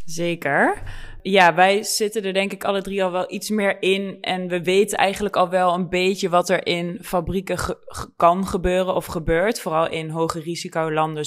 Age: 20-39